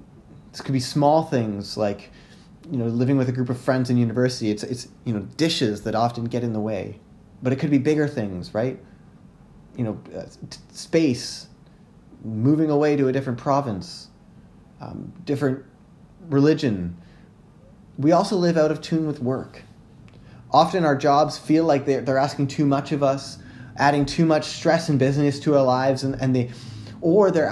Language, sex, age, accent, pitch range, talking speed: English, male, 20-39, American, 115-145 Hz, 170 wpm